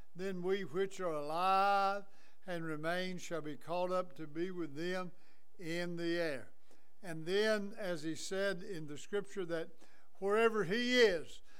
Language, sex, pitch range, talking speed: English, male, 160-195 Hz, 155 wpm